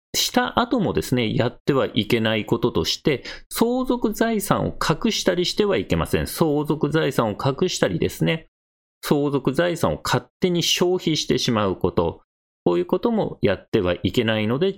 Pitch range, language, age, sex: 120-200 Hz, Japanese, 40-59, male